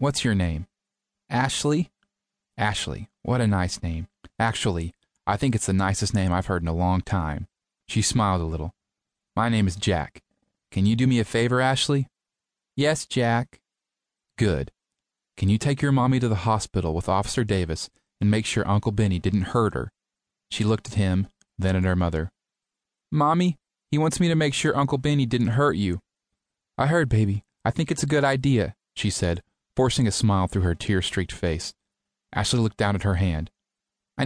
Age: 30-49